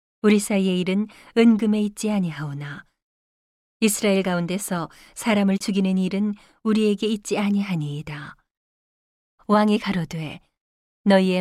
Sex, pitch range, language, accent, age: female, 180-215 Hz, Korean, native, 40-59